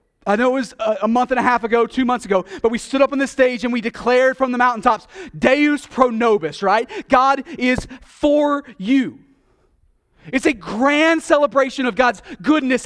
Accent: American